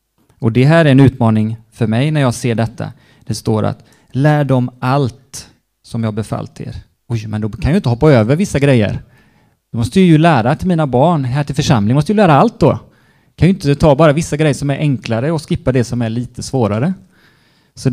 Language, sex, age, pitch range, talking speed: Swedish, male, 30-49, 115-145 Hz, 225 wpm